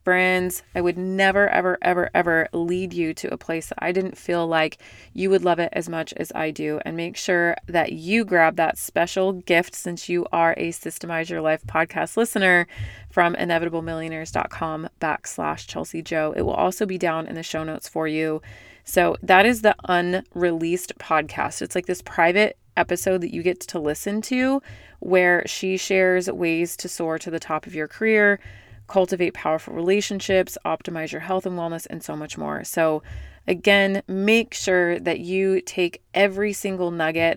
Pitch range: 160-190 Hz